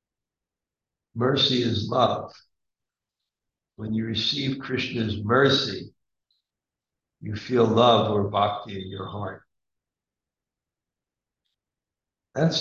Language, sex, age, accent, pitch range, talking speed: English, male, 60-79, American, 100-125 Hz, 80 wpm